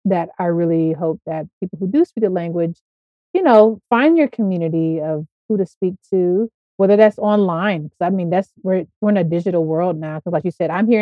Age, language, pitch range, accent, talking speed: 30-49, English, 165-200 Hz, American, 220 wpm